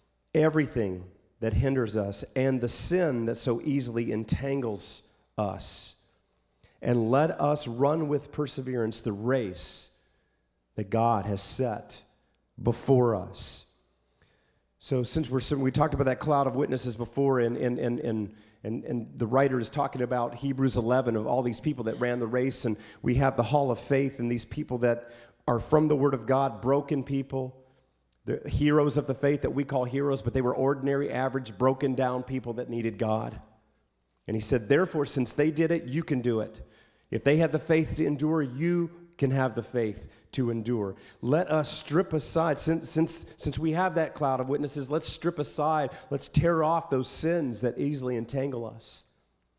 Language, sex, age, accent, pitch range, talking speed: English, male, 40-59, American, 115-150 Hz, 180 wpm